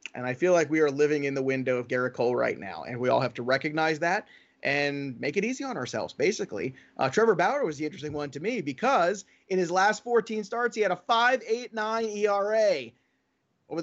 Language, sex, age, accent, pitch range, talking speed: English, male, 30-49, American, 140-195 Hz, 215 wpm